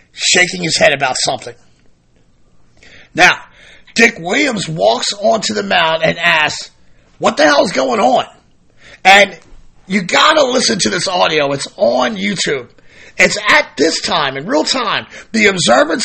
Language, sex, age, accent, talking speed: English, male, 40-59, American, 150 wpm